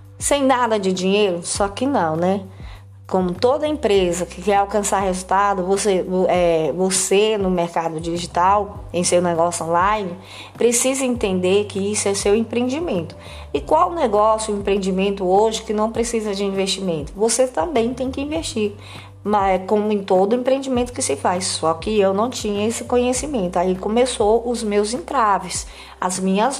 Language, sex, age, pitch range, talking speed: Portuguese, female, 20-39, 185-240 Hz, 160 wpm